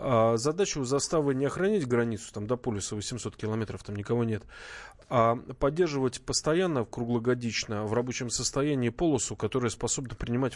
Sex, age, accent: male, 20-39, native